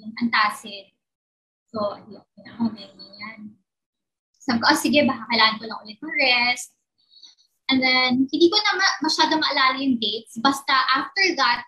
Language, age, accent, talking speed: Filipino, 20-39, native, 150 wpm